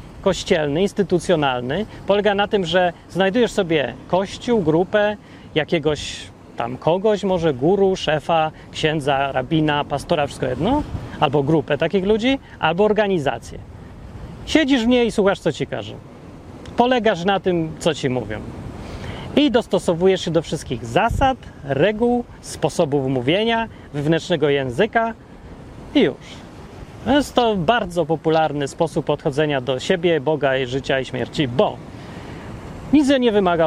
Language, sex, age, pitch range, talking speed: Polish, male, 30-49, 145-205 Hz, 125 wpm